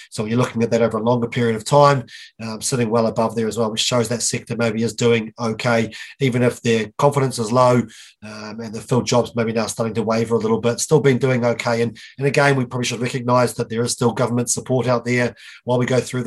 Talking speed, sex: 250 wpm, male